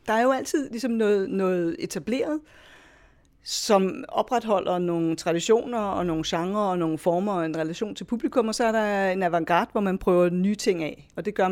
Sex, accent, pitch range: female, Danish, 175-220 Hz